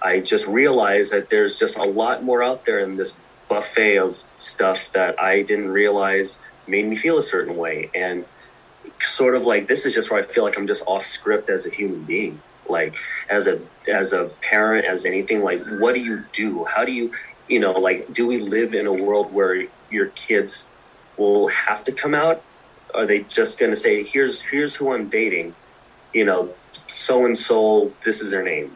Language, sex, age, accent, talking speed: English, male, 30-49, American, 200 wpm